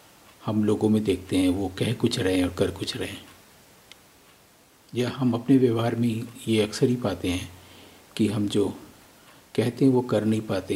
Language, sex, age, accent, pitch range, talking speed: English, male, 50-69, Indian, 95-125 Hz, 180 wpm